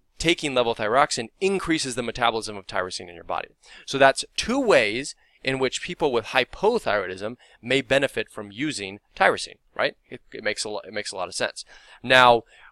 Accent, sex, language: American, male, English